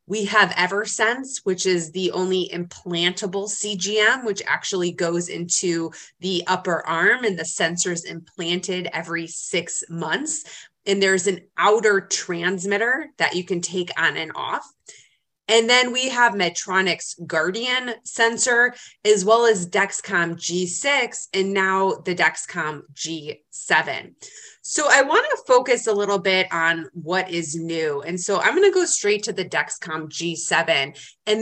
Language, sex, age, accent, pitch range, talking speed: English, female, 20-39, American, 175-225 Hz, 140 wpm